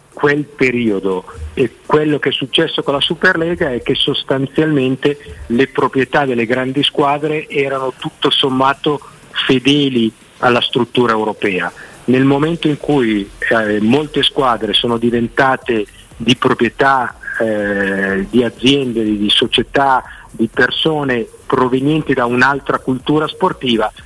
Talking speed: 120 wpm